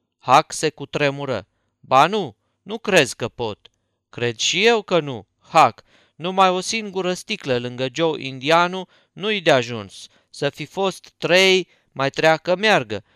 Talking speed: 145 wpm